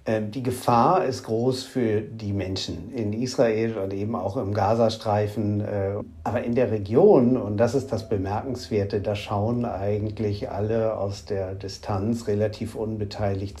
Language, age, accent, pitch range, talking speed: German, 50-69, German, 105-125 Hz, 140 wpm